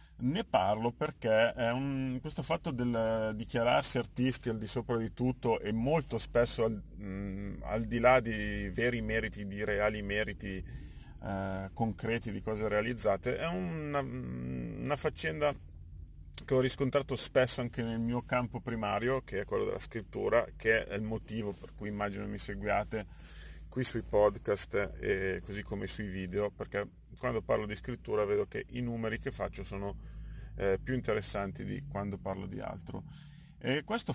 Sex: male